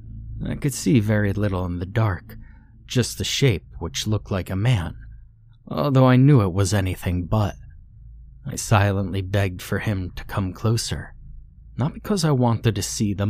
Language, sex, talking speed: English, male, 170 wpm